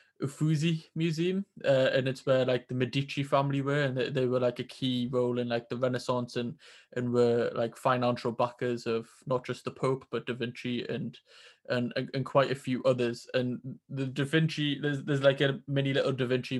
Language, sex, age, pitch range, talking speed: English, male, 20-39, 125-140 Hz, 205 wpm